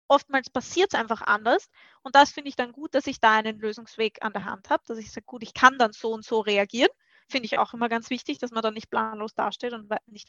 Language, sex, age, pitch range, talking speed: German, female, 20-39, 230-285 Hz, 260 wpm